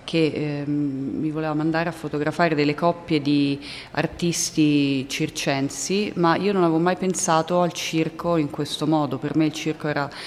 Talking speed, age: 165 wpm, 30-49